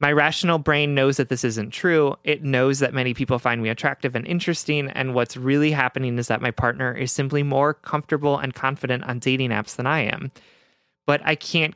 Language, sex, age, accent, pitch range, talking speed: English, male, 30-49, American, 125-150 Hz, 210 wpm